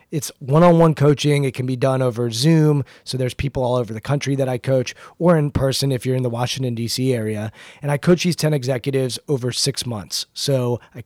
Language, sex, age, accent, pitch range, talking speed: English, male, 30-49, American, 130-155 Hz, 215 wpm